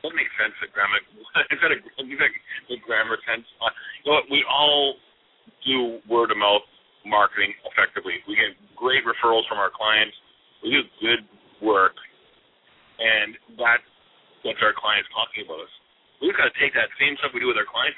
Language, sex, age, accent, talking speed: English, male, 40-59, American, 165 wpm